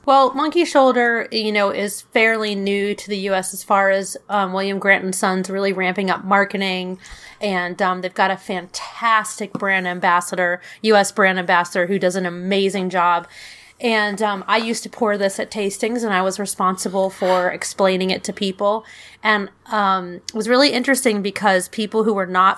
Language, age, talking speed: English, 30-49, 180 wpm